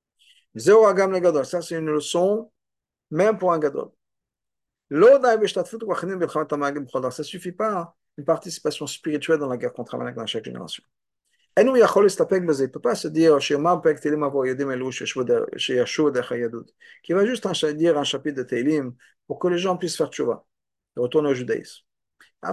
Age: 50-69